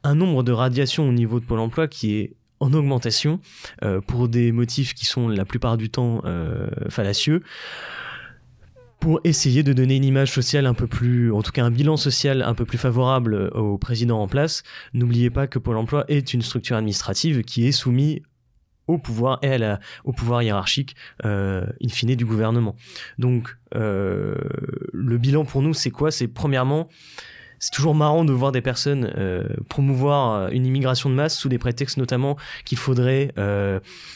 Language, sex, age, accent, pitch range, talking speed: French, male, 20-39, French, 115-140 Hz, 180 wpm